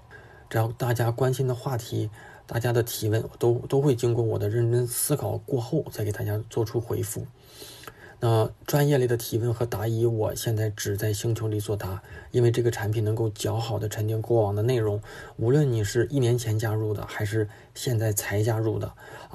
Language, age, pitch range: Chinese, 20-39, 105-120 Hz